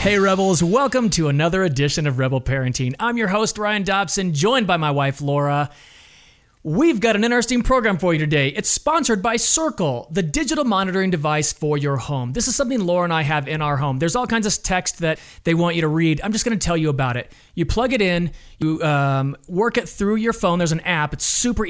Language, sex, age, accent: English, male, 30-49, American